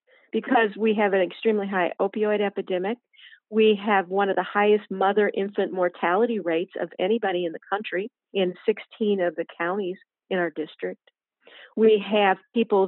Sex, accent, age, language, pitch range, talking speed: female, American, 50-69, English, 185-230 Hz, 160 wpm